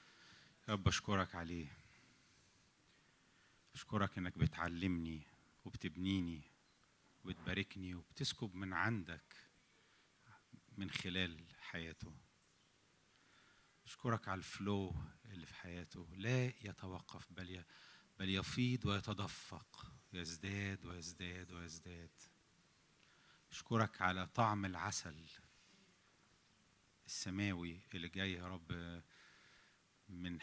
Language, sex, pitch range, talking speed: English, male, 90-105 Hz, 75 wpm